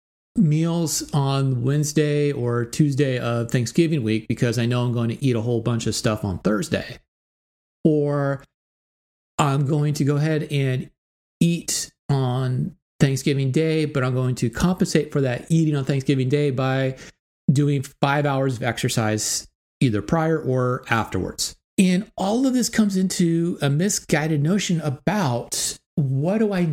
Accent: American